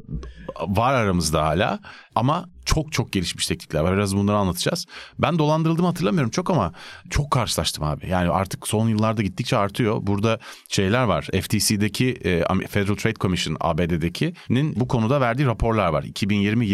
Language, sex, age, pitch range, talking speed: Turkish, male, 40-59, 95-135 Hz, 140 wpm